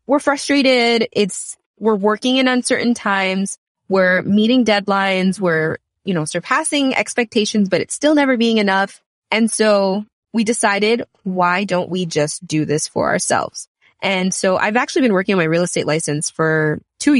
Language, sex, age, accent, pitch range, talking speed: English, female, 20-39, American, 180-225 Hz, 165 wpm